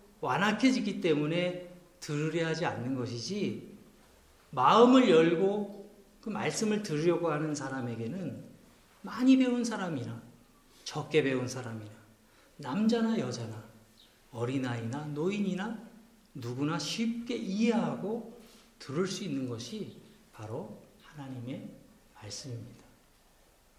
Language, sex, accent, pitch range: Korean, male, native, 130-200 Hz